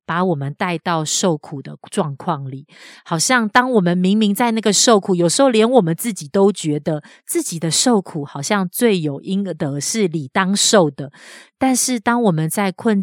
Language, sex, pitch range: Chinese, female, 160-210 Hz